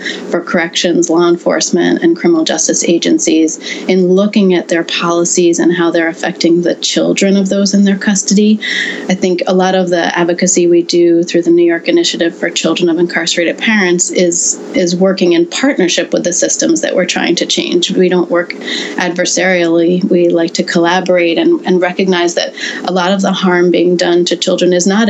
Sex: female